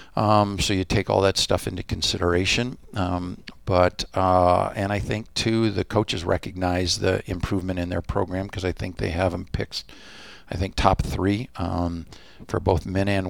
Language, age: English, 50-69